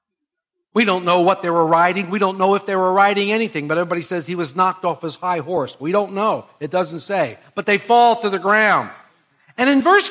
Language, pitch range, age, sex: English, 175-240 Hz, 50-69, male